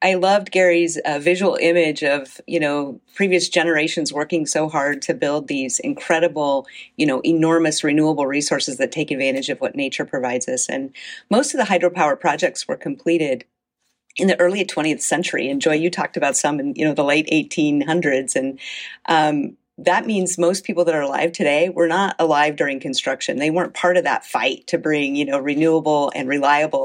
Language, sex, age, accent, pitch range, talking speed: English, female, 40-59, American, 145-185 Hz, 190 wpm